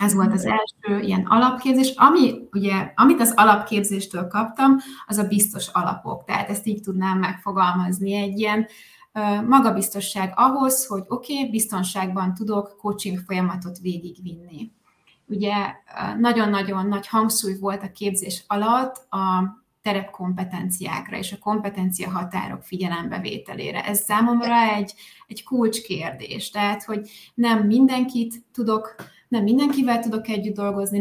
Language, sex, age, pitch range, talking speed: Hungarian, female, 20-39, 190-220 Hz, 130 wpm